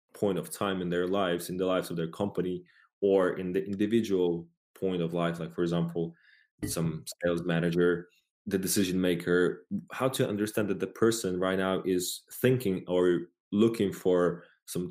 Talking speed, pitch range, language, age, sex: 170 wpm, 90-100 Hz, English, 20-39, male